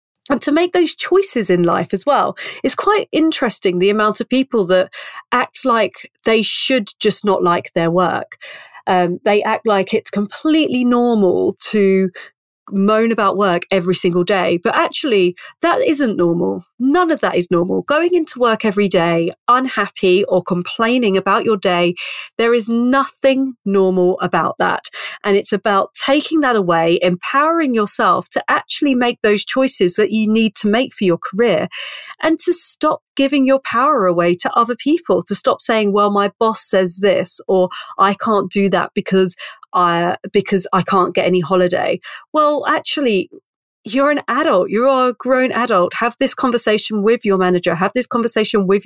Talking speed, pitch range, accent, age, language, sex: 170 wpm, 190-255 Hz, British, 30-49, English, female